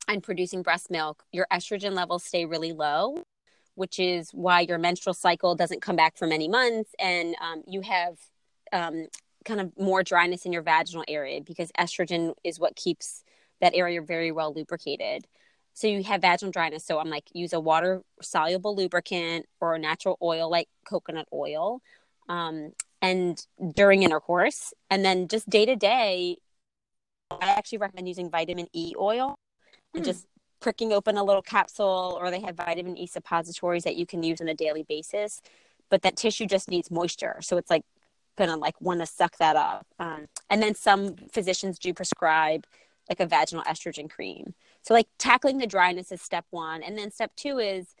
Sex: female